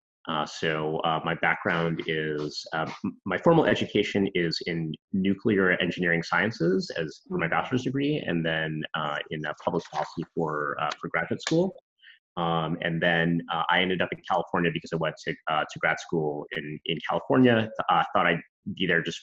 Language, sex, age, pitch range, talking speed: English, male, 30-49, 80-105 Hz, 180 wpm